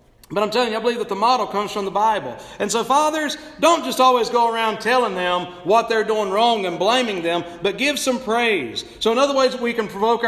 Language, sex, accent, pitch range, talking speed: English, male, American, 190-260 Hz, 240 wpm